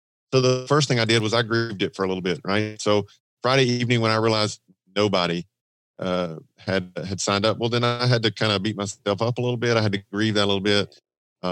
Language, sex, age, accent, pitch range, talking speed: English, male, 40-59, American, 100-120 Hz, 255 wpm